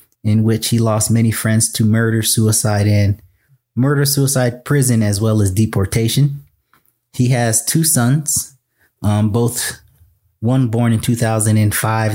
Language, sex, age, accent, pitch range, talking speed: English, male, 30-49, American, 110-125 Hz, 135 wpm